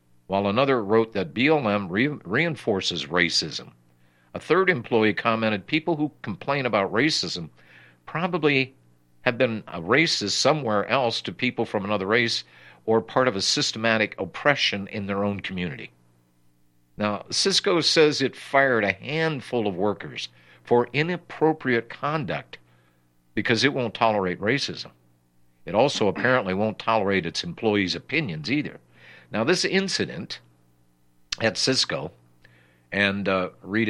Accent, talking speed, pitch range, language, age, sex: American, 130 wpm, 85-120 Hz, English, 50-69, male